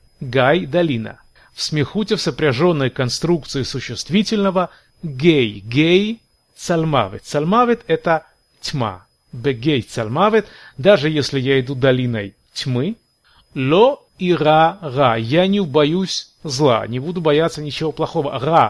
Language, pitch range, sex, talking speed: Russian, 130-175 Hz, male, 120 wpm